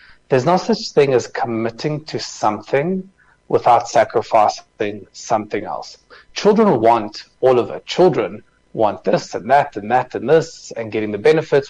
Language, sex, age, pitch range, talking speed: English, male, 30-49, 110-155 Hz, 155 wpm